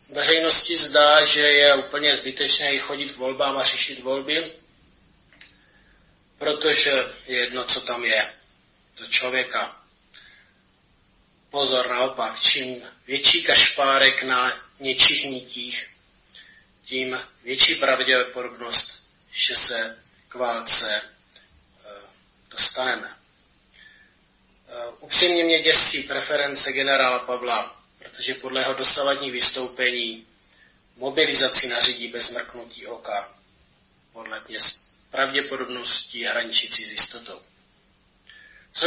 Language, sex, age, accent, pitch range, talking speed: Czech, male, 30-49, native, 125-145 Hz, 90 wpm